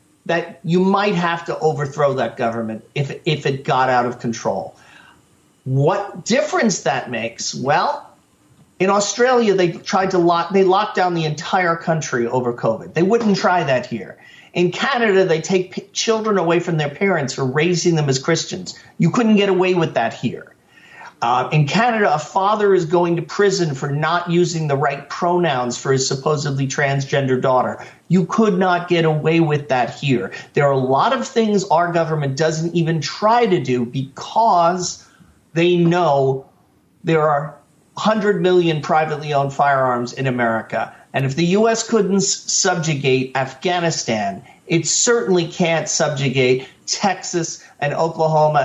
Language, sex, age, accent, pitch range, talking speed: English, male, 40-59, American, 140-185 Hz, 160 wpm